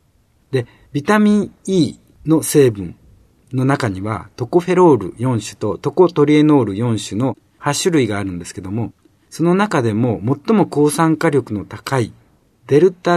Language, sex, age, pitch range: Japanese, male, 50-69, 115-165 Hz